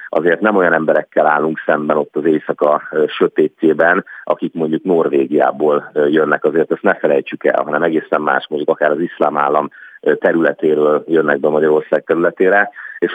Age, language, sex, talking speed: 30-49, Hungarian, male, 150 wpm